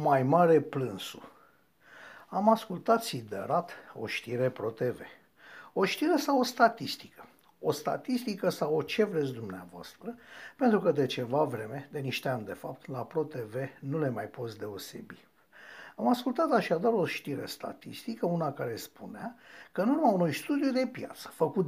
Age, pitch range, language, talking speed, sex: 60-79, 135-225 Hz, Romanian, 150 wpm, male